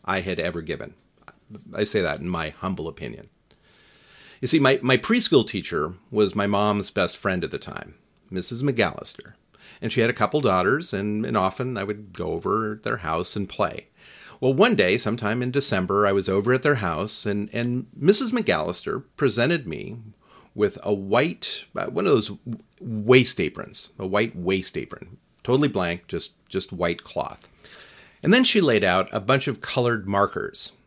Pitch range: 100-135 Hz